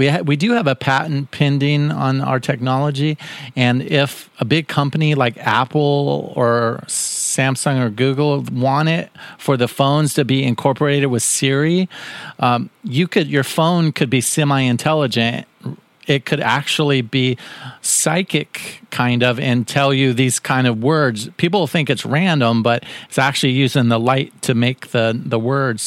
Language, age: English, 40-59